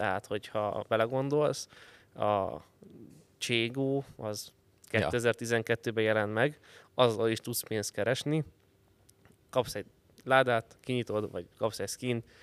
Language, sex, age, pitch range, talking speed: Hungarian, male, 20-39, 105-125 Hz, 105 wpm